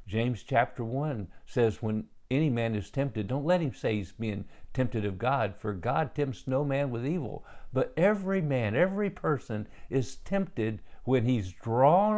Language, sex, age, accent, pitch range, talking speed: English, male, 50-69, American, 115-160 Hz, 170 wpm